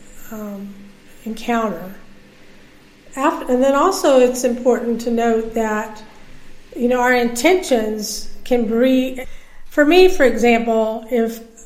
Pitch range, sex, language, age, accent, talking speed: 225-260 Hz, female, English, 50-69, American, 115 wpm